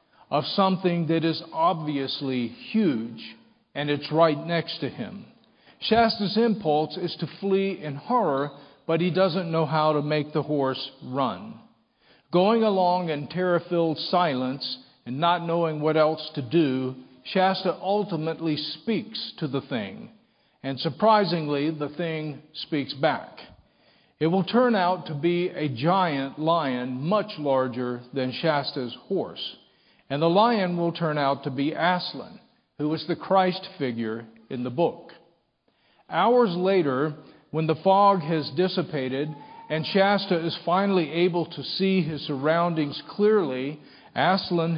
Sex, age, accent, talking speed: male, 50-69, American, 135 wpm